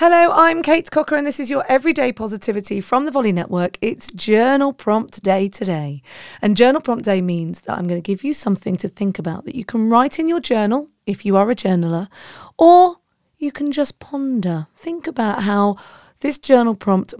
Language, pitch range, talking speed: English, 180-255 Hz, 200 wpm